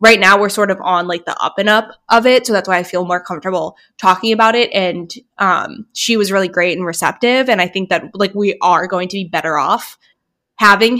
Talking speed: 240 wpm